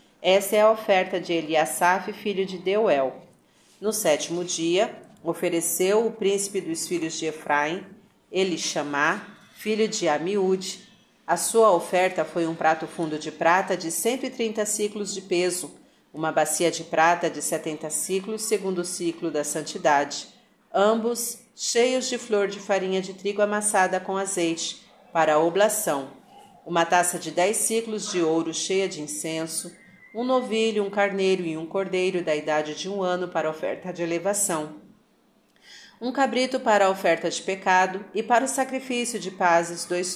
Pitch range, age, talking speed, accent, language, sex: 170-210 Hz, 40-59, 150 wpm, Brazilian, Portuguese, female